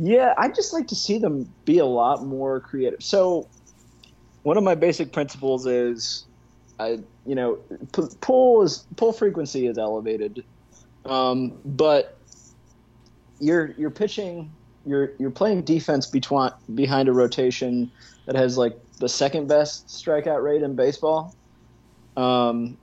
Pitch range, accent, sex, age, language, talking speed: 125-160 Hz, American, male, 30-49, English, 135 wpm